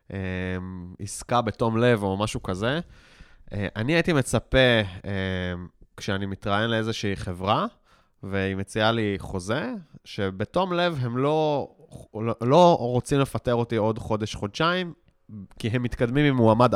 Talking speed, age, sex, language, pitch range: 115 wpm, 20-39, male, Hebrew, 105-135 Hz